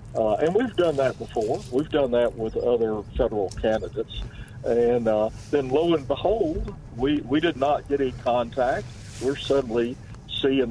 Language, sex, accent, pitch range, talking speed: English, male, American, 115-140 Hz, 165 wpm